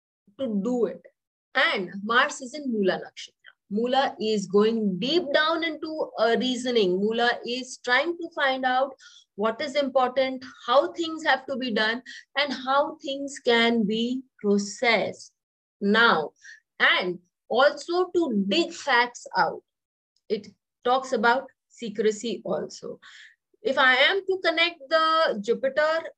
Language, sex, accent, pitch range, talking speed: English, female, Indian, 210-280 Hz, 130 wpm